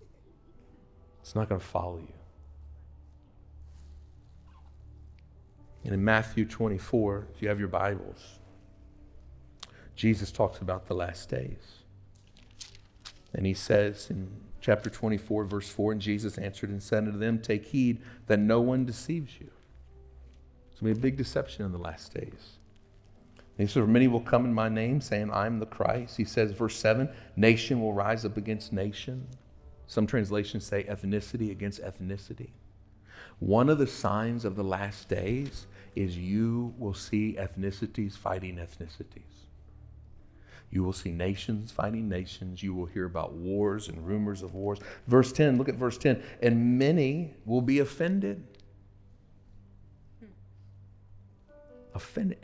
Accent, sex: American, male